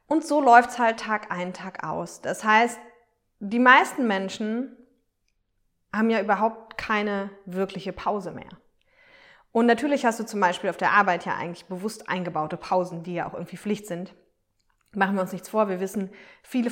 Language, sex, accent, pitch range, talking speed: German, female, German, 190-240 Hz, 170 wpm